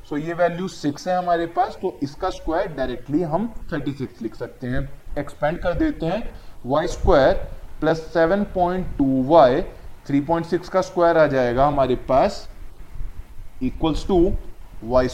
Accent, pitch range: native, 140-185 Hz